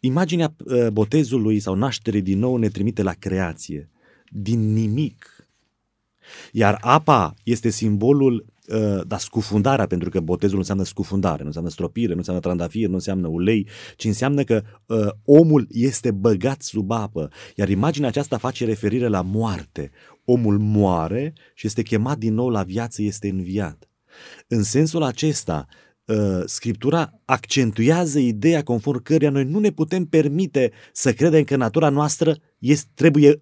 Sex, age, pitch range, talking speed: male, 30-49, 100-140 Hz, 140 wpm